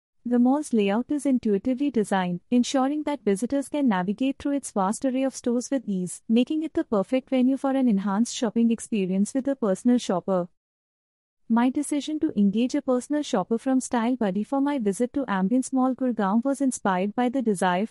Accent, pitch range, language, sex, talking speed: Indian, 210-270 Hz, English, female, 185 wpm